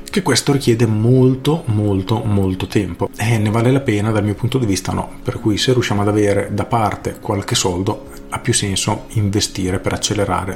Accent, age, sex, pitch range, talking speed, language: native, 40-59, male, 100-125 Hz, 200 wpm, Italian